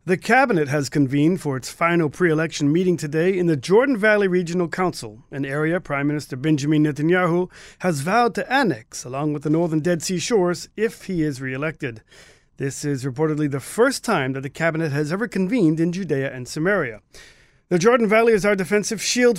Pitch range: 155-190 Hz